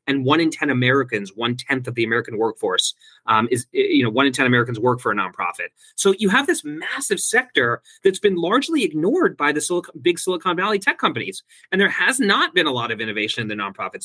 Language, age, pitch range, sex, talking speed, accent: English, 30-49, 130-190 Hz, male, 225 wpm, American